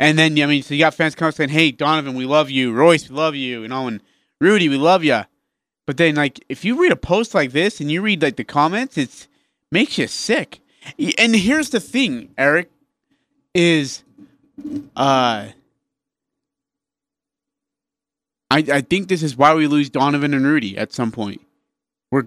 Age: 30-49